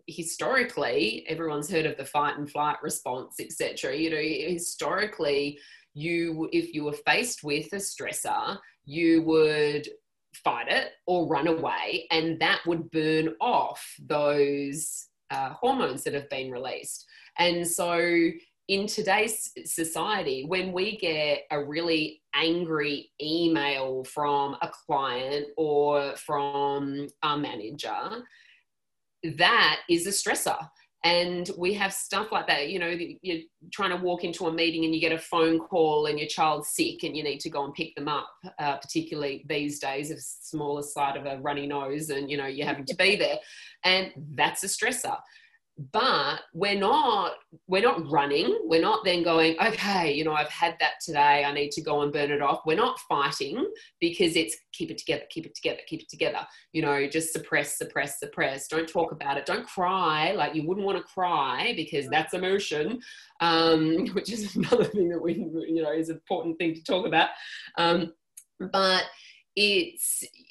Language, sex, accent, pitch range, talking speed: English, female, Australian, 145-185 Hz, 170 wpm